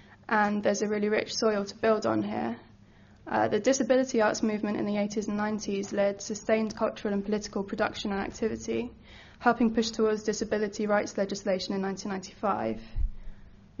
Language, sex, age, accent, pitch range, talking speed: English, female, 10-29, British, 200-225 Hz, 155 wpm